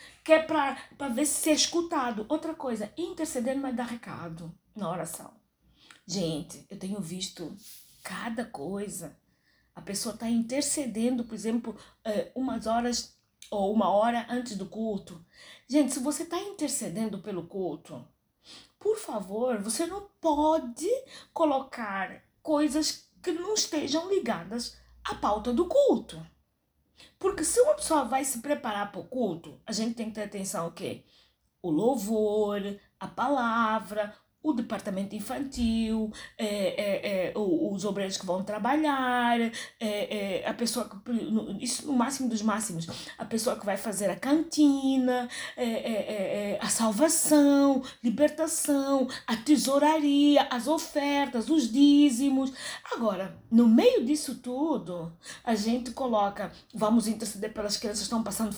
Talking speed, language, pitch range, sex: 125 wpm, Portuguese, 210-285 Hz, female